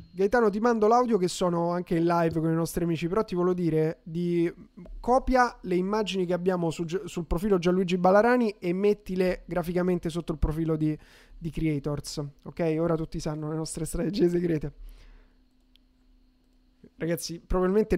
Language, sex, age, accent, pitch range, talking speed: Italian, male, 20-39, native, 165-210 Hz, 155 wpm